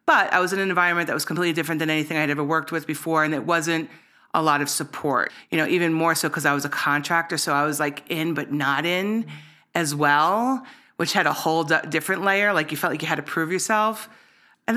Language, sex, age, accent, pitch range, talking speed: English, female, 30-49, American, 150-185 Hz, 245 wpm